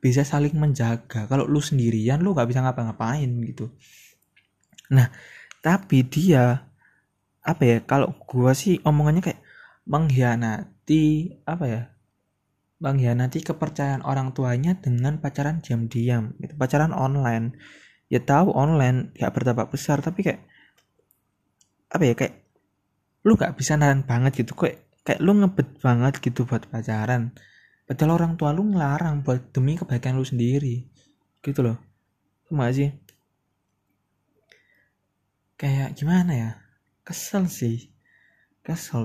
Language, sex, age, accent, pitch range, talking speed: Indonesian, male, 20-39, native, 120-150 Hz, 125 wpm